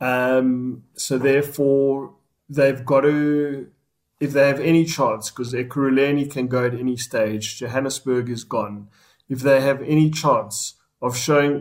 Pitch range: 125-140 Hz